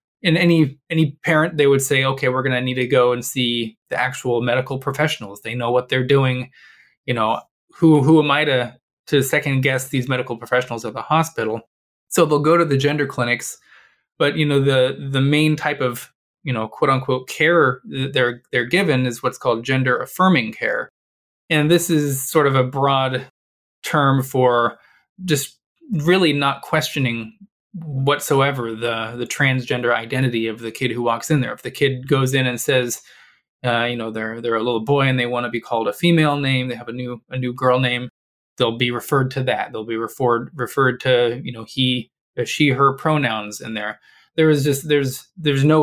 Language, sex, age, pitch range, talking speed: English, male, 20-39, 120-145 Hz, 200 wpm